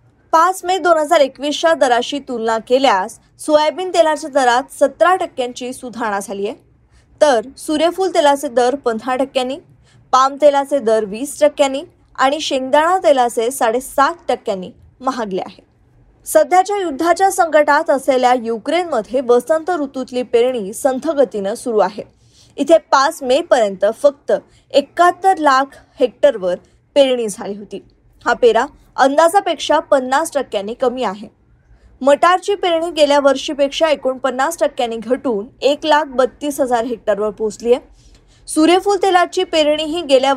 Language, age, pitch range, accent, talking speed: Marathi, 20-39, 245-310 Hz, native, 105 wpm